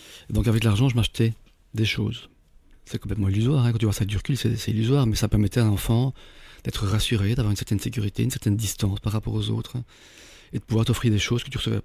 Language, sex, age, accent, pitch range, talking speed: French, male, 40-59, French, 100-120 Hz, 255 wpm